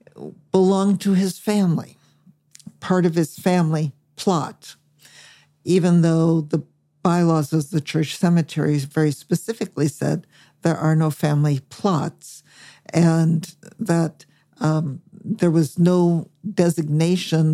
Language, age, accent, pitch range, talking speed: English, 60-79, American, 150-175 Hz, 110 wpm